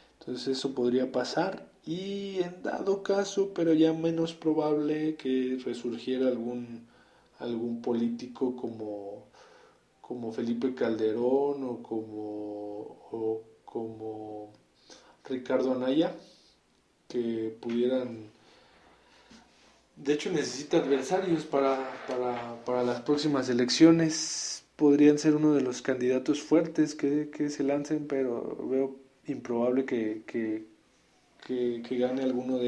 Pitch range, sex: 120-150 Hz, male